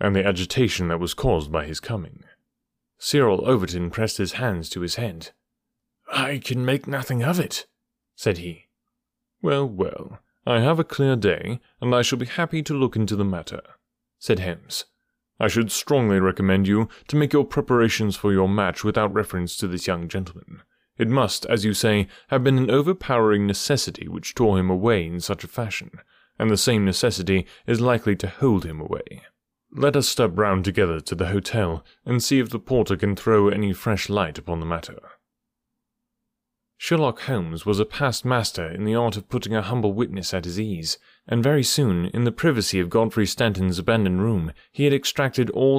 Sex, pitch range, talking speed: male, 95-125 Hz, 185 wpm